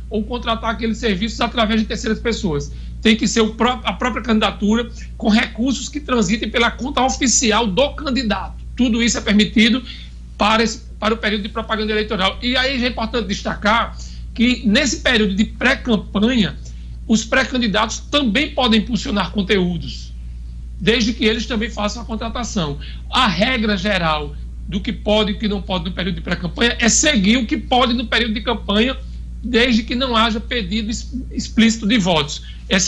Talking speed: 170 wpm